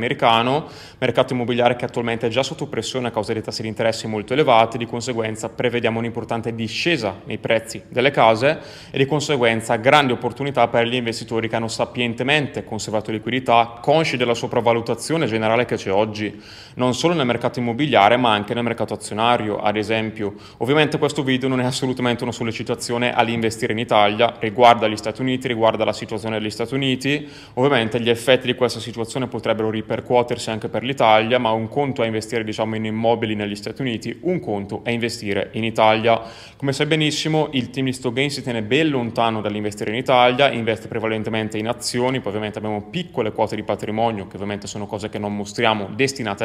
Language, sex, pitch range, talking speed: Italian, male, 110-130 Hz, 185 wpm